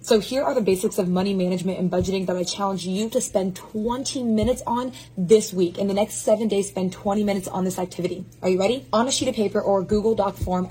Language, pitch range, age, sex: English, 185-220 Hz, 20-39, female